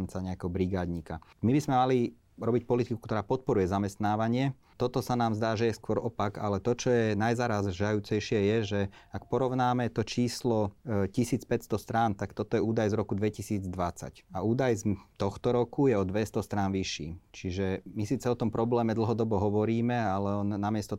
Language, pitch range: Slovak, 100-115 Hz